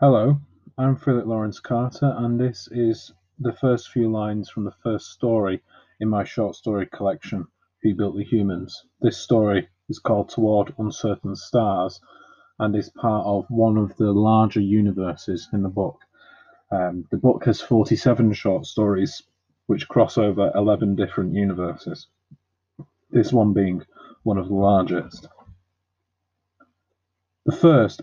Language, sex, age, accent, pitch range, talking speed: English, male, 30-49, British, 100-125 Hz, 140 wpm